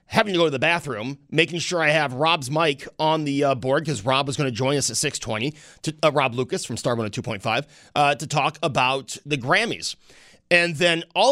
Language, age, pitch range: English, 30-49, 145-180 Hz